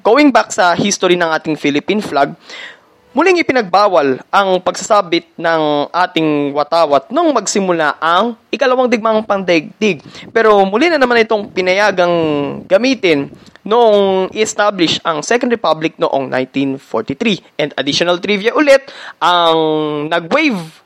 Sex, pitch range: male, 145-205 Hz